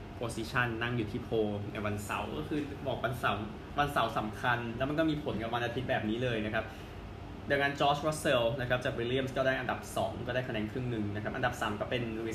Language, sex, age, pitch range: Thai, male, 20-39, 105-135 Hz